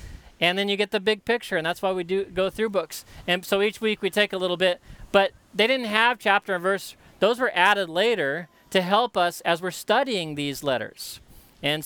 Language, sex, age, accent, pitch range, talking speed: English, male, 40-59, American, 175-210 Hz, 225 wpm